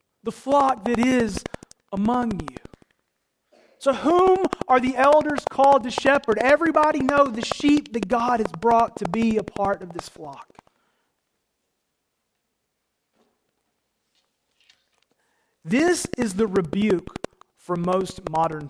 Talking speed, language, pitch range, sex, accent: 115 wpm, English, 165-245 Hz, male, American